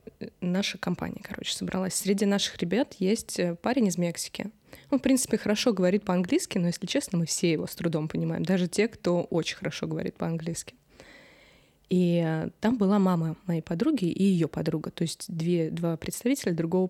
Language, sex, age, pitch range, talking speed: Russian, female, 20-39, 175-210 Hz, 165 wpm